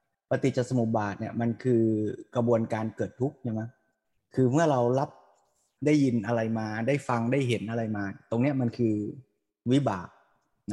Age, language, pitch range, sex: 20-39, Thai, 115-145 Hz, male